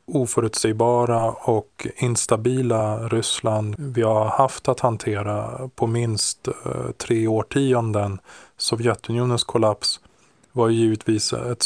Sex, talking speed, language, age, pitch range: male, 100 wpm, Swedish, 20-39, 105-125 Hz